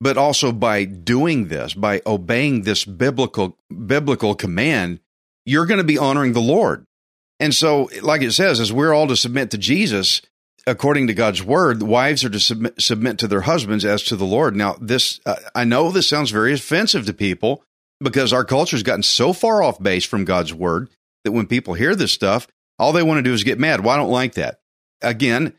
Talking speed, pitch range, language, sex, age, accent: 210 wpm, 100-135 Hz, English, male, 40-59, American